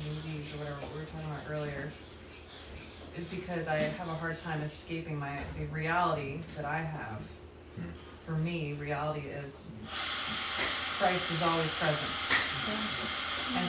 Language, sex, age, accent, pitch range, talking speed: English, female, 30-49, American, 145-170 Hz, 125 wpm